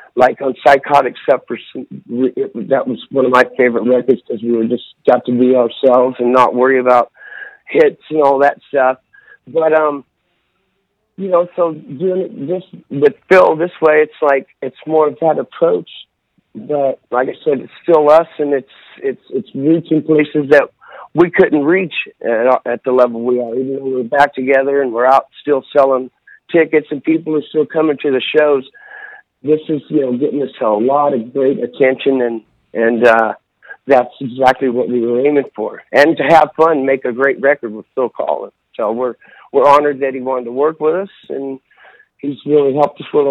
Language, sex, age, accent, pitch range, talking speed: English, male, 50-69, American, 125-160 Hz, 190 wpm